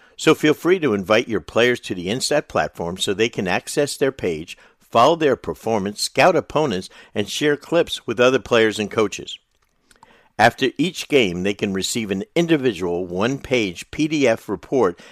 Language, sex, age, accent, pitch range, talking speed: English, male, 60-79, American, 90-120 Hz, 165 wpm